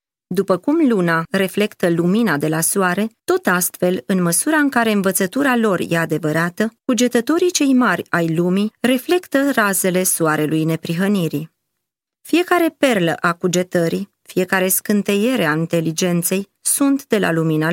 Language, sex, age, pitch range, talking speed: Romanian, female, 20-39, 165-220 Hz, 130 wpm